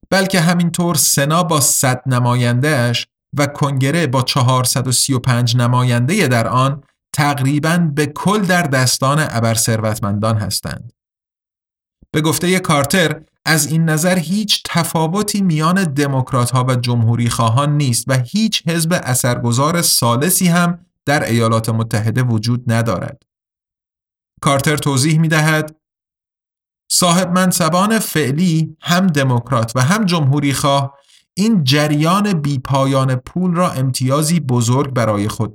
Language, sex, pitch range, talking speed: Persian, male, 125-170 Hz, 115 wpm